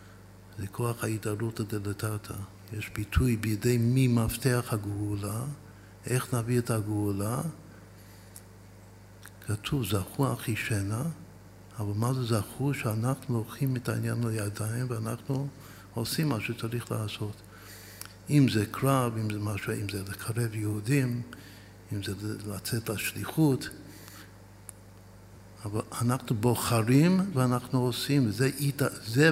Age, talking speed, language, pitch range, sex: 60-79, 110 wpm, Hebrew, 100-125 Hz, male